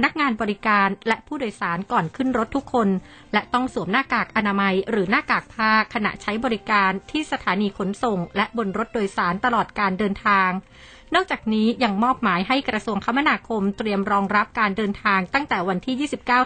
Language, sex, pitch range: Thai, female, 200-240 Hz